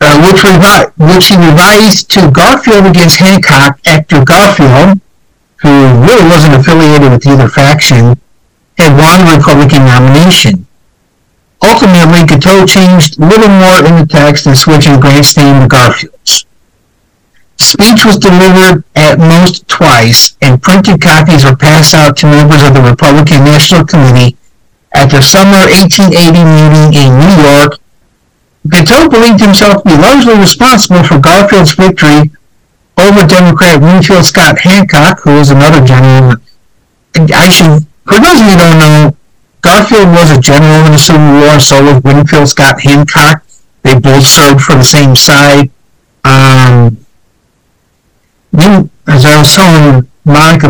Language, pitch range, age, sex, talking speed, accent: English, 140-175 Hz, 60-79, male, 145 wpm, American